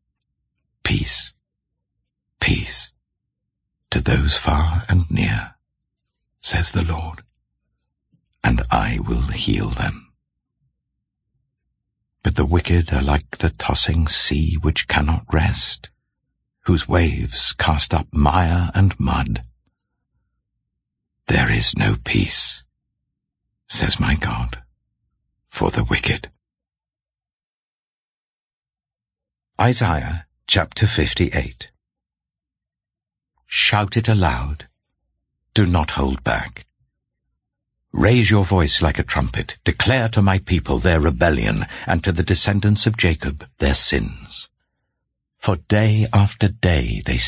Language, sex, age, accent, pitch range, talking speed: English, male, 60-79, British, 75-100 Hz, 100 wpm